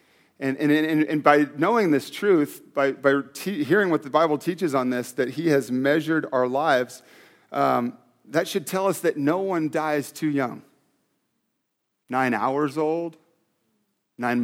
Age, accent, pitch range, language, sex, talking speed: 40-59, American, 120-155 Hz, English, male, 160 wpm